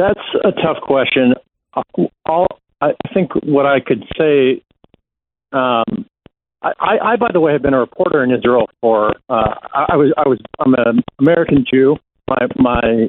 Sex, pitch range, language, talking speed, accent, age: male, 120-155 Hz, English, 165 wpm, American, 50-69